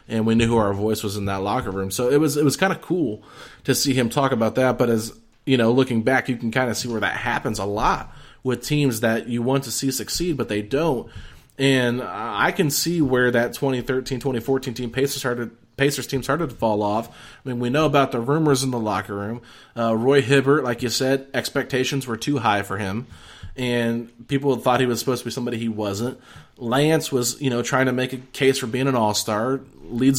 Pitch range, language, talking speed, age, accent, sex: 115-135 Hz, English, 240 wpm, 30-49, American, male